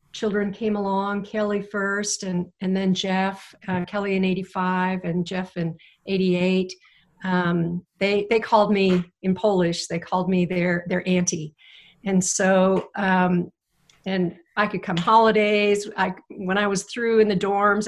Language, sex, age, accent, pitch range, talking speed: English, female, 50-69, American, 180-205 Hz, 155 wpm